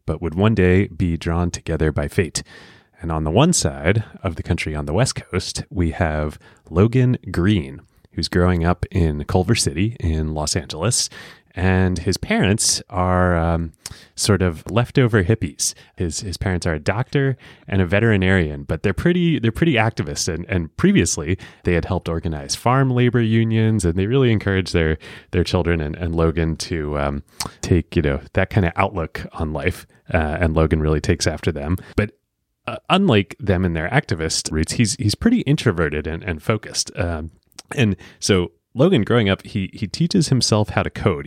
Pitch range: 85-110 Hz